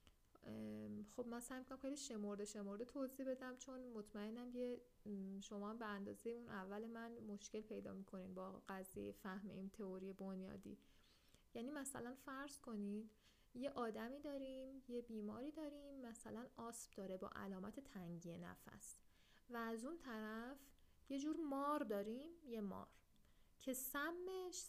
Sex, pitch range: female, 205-270 Hz